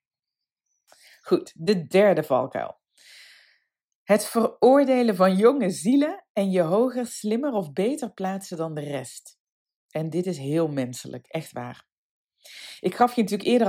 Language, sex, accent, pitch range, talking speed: Dutch, female, Dutch, 165-230 Hz, 135 wpm